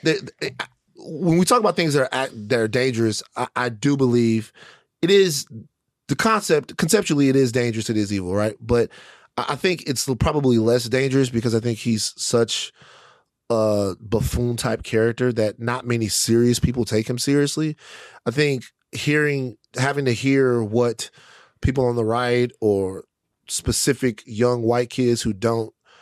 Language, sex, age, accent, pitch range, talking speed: English, male, 30-49, American, 110-125 Hz, 155 wpm